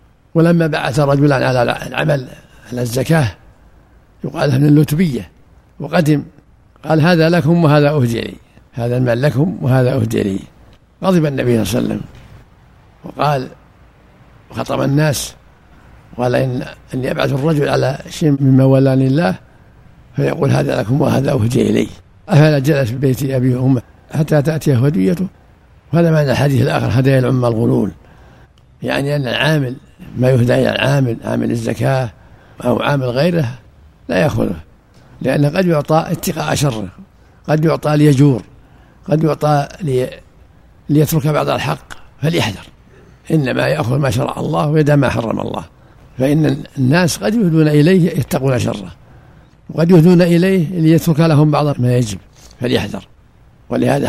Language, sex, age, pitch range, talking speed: Arabic, male, 60-79, 125-155 Hz, 135 wpm